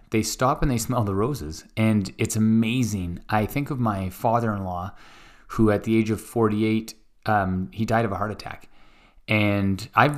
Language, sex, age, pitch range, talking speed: English, male, 20-39, 100-115 Hz, 175 wpm